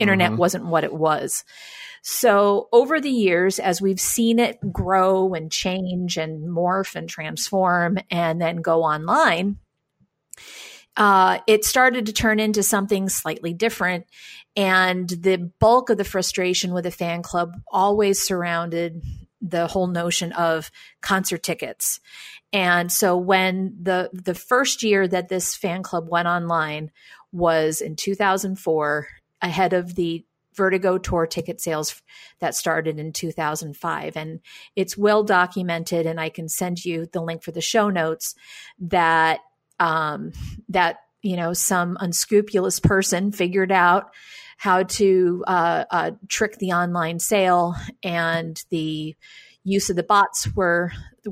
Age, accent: 40-59, American